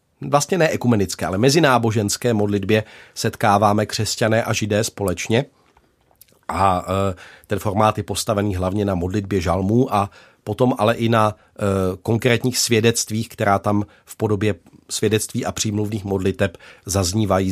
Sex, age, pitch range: male, 40-59, 100-120 Hz